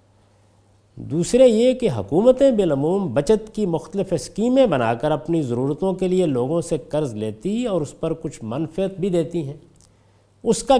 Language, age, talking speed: Urdu, 50-69, 160 wpm